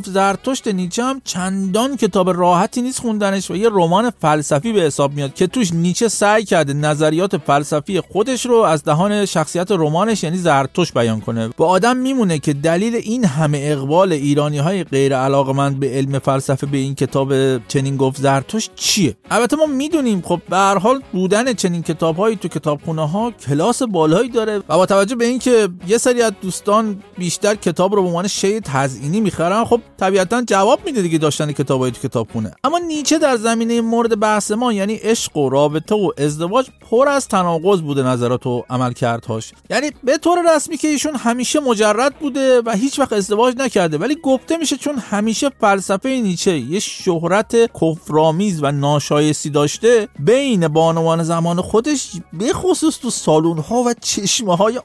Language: Persian